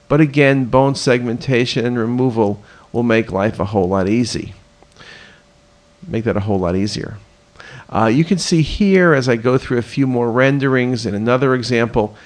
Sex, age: male, 50-69